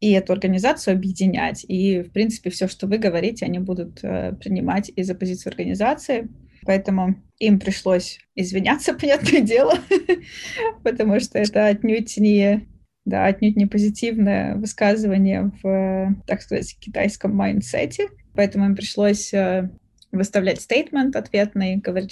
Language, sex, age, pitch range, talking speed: Russian, female, 20-39, 190-230 Hz, 115 wpm